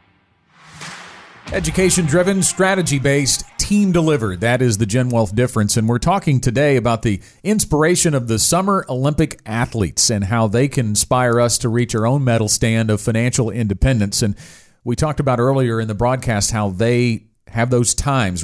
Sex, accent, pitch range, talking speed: male, American, 105-135 Hz, 160 wpm